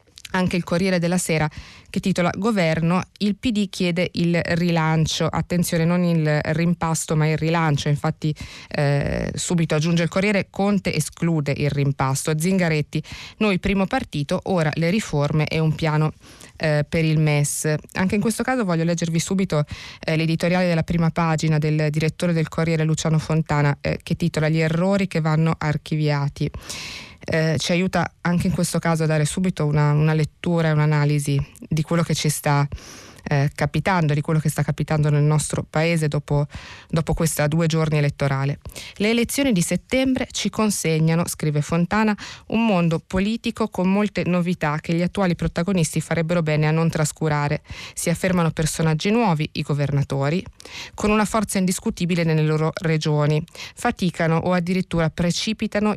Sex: female